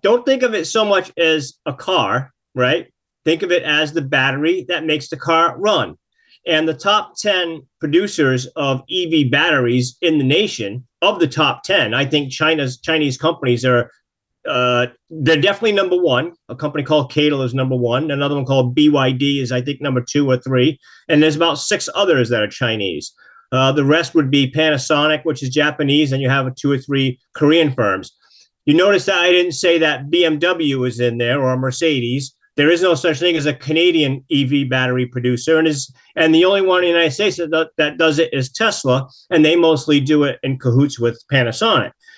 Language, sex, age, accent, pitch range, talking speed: English, male, 40-59, American, 130-160 Hz, 200 wpm